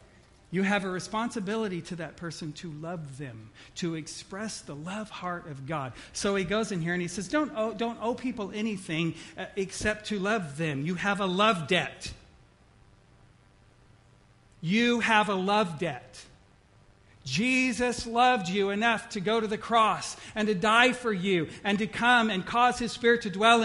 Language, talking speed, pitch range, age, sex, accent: English, 175 wpm, 175-225 Hz, 50-69, male, American